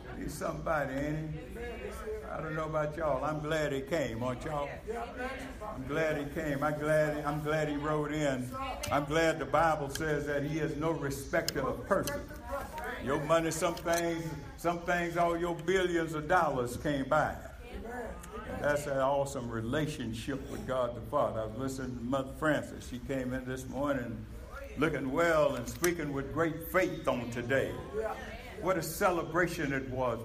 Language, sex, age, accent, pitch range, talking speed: English, male, 60-79, American, 125-165 Hz, 175 wpm